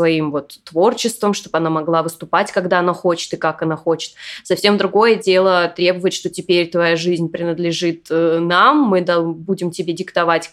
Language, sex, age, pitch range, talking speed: Russian, female, 20-39, 170-205 Hz, 160 wpm